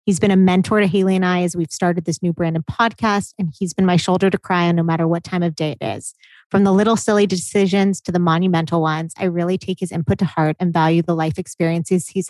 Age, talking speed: 30-49, 265 wpm